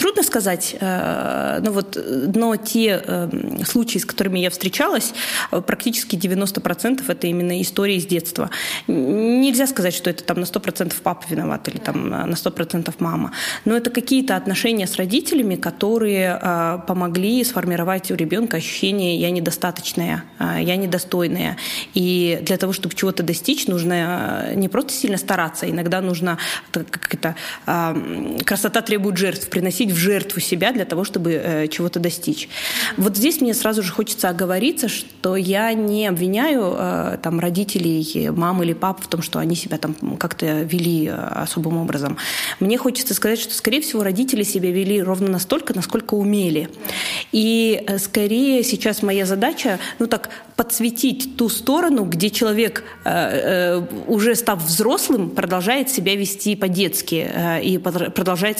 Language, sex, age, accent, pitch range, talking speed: Russian, female, 20-39, native, 175-230 Hz, 135 wpm